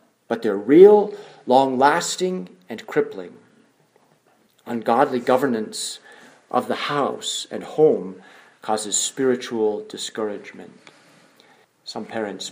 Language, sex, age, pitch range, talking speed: English, male, 40-59, 120-160 Hz, 85 wpm